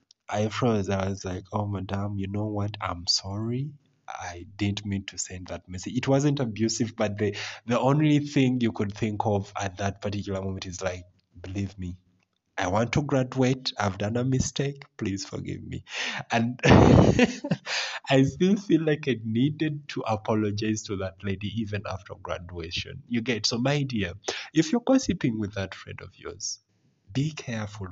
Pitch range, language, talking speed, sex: 95-130 Hz, English, 170 wpm, male